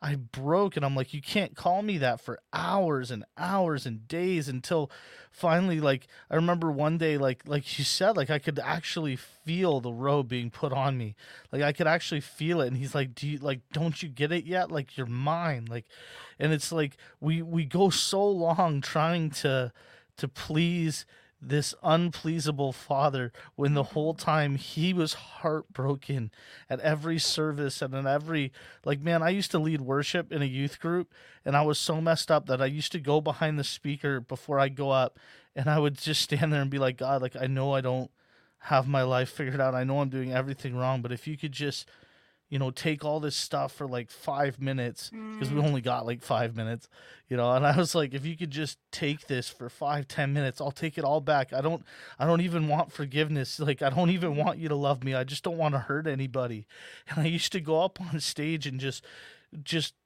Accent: American